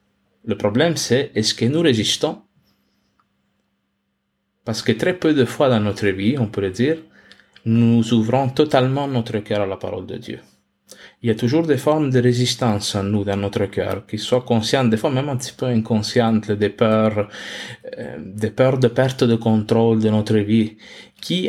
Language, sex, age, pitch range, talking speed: French, male, 30-49, 100-120 Hz, 175 wpm